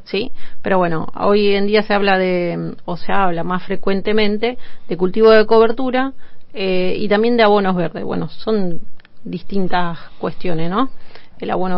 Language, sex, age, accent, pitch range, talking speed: Spanish, female, 30-49, Argentinian, 175-205 Hz, 160 wpm